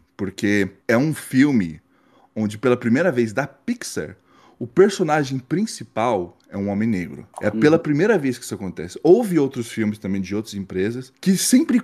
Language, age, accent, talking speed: Portuguese, 20-39, Brazilian, 165 wpm